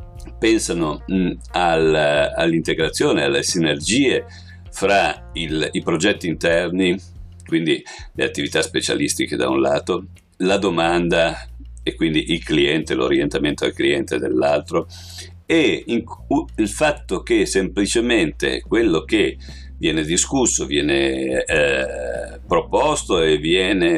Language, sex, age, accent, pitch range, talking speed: Italian, male, 50-69, native, 80-105 Hz, 100 wpm